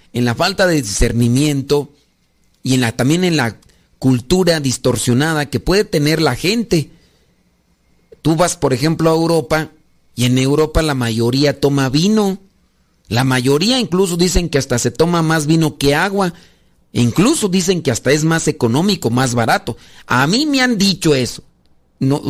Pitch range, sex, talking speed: 130-170 Hz, male, 160 wpm